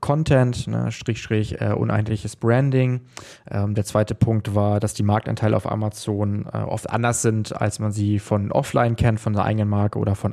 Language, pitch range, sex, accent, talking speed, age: German, 105-125 Hz, male, German, 175 wpm, 20-39